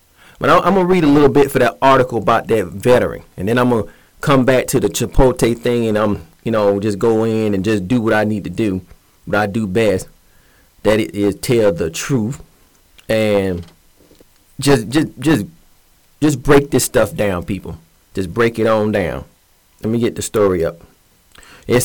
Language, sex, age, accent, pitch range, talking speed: English, male, 30-49, American, 105-130 Hz, 195 wpm